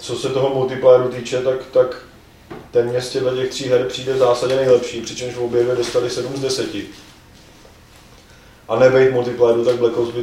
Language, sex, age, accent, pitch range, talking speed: Czech, male, 30-49, native, 130-150 Hz, 170 wpm